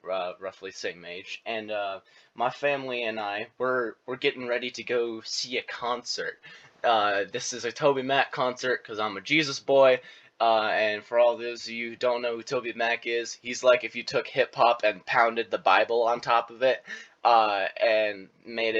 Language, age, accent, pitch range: English, 20-39, American, 115-140 Hz